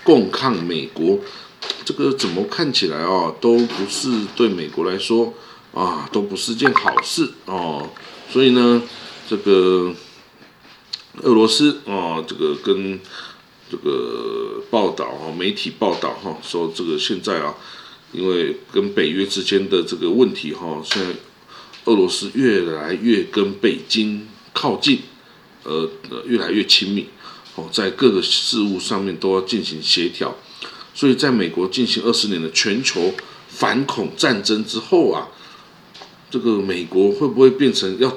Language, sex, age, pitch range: Chinese, male, 50-69, 95-140 Hz